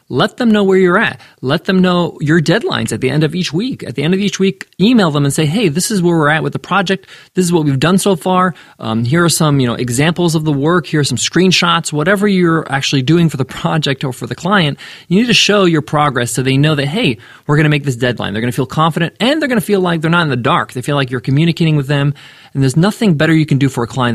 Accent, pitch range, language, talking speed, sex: American, 130-180 Hz, English, 295 wpm, male